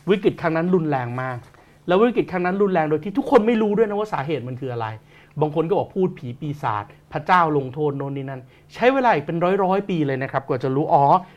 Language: Thai